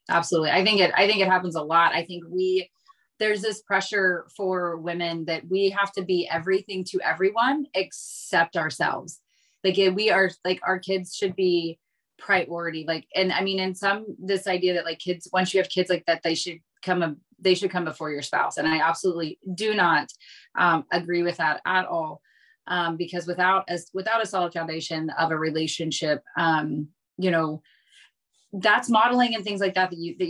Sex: female